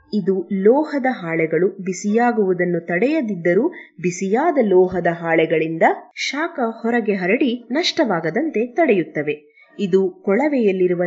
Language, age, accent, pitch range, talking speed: Kannada, 30-49, native, 175-245 Hz, 80 wpm